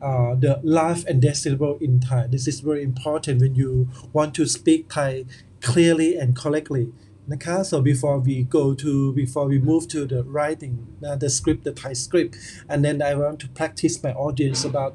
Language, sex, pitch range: Thai, male, 130-175 Hz